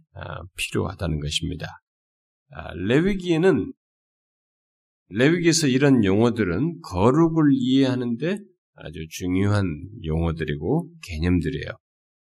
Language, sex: Korean, male